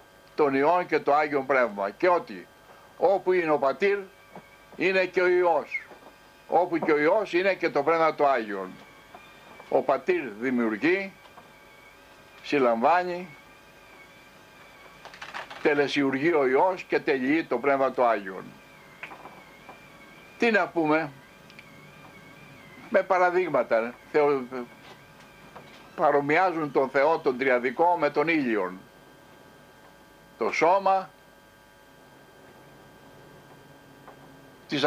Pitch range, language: 135-185 Hz, Greek